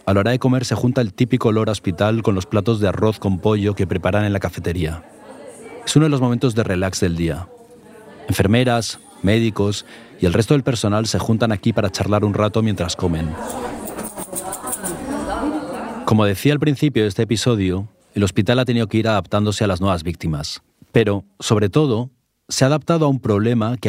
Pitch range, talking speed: 95-120 Hz, 190 wpm